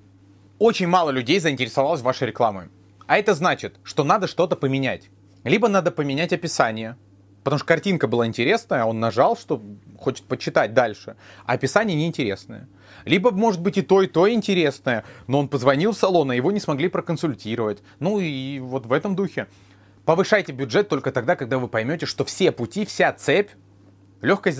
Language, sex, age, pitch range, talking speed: Russian, male, 30-49, 100-170 Hz, 165 wpm